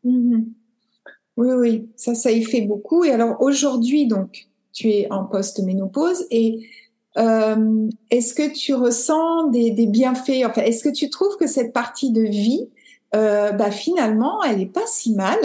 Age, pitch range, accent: 60-79, 220-270 Hz, French